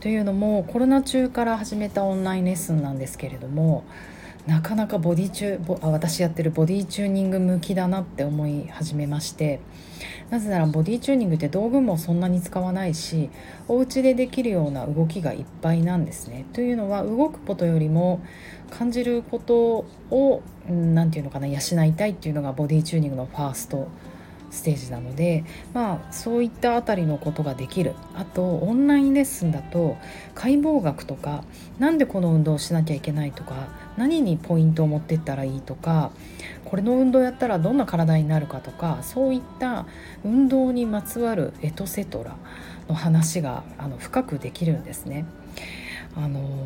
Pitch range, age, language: 145-205 Hz, 30-49, Japanese